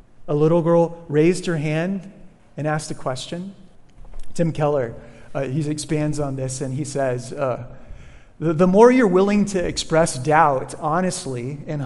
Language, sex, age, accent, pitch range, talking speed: English, male, 30-49, American, 145-200 Hz, 155 wpm